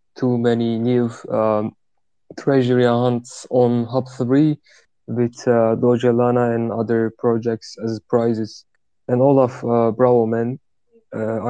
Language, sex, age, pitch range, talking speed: English, male, 20-39, 115-125 Hz, 120 wpm